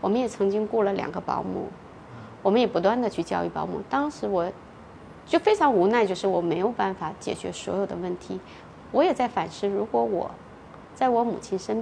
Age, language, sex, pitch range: 20-39, Chinese, female, 185-230 Hz